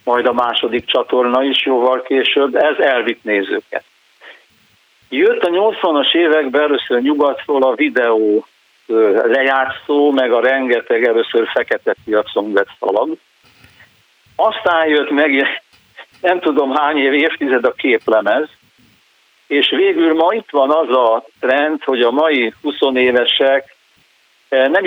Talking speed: 120 wpm